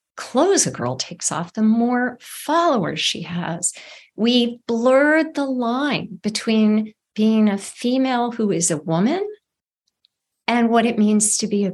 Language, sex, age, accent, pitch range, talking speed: English, female, 50-69, American, 175-230 Hz, 150 wpm